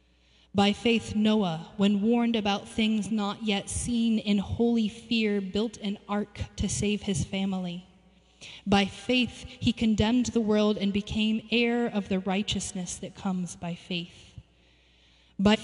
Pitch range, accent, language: 195-225 Hz, American, English